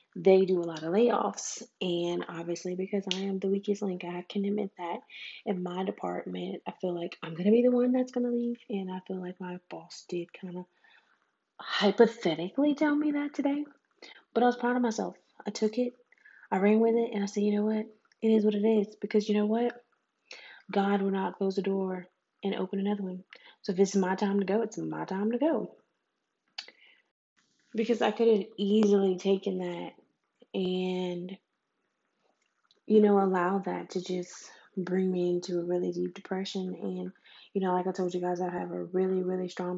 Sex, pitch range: female, 180-210 Hz